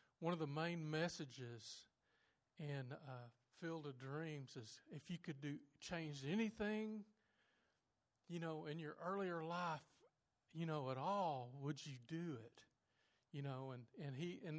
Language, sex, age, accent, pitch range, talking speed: English, male, 50-69, American, 140-170 Hz, 150 wpm